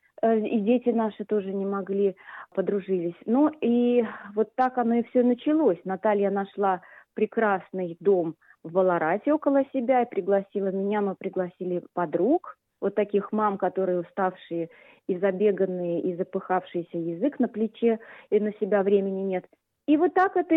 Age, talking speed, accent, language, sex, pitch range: 30-49, 145 wpm, native, Russian, female, 200-250 Hz